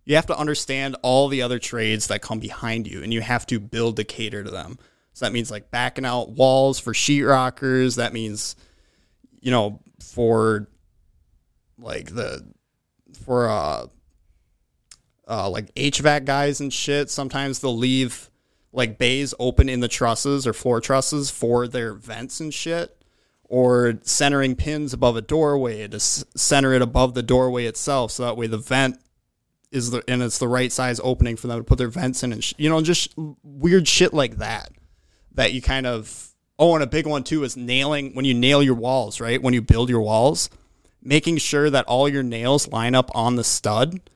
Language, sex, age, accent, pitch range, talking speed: English, male, 30-49, American, 115-135 Hz, 190 wpm